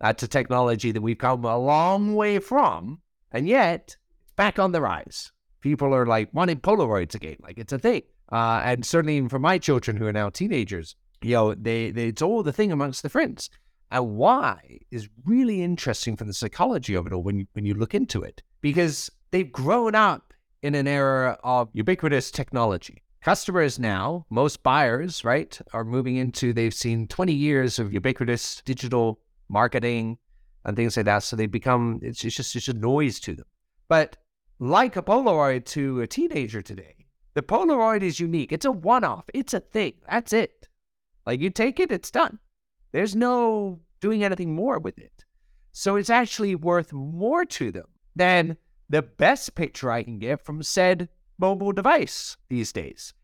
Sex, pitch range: male, 115-185 Hz